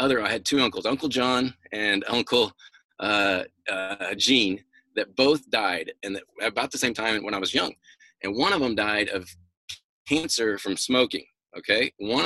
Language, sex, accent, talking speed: English, male, American, 175 wpm